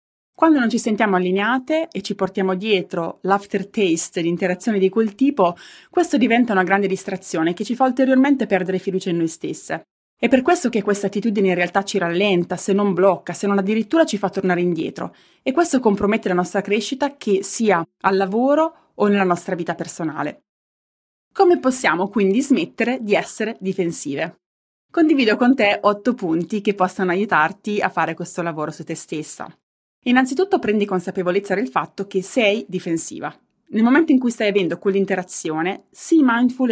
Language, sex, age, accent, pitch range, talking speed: Italian, female, 20-39, native, 185-245 Hz, 165 wpm